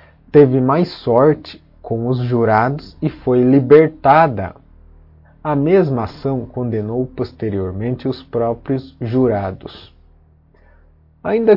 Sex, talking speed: male, 95 wpm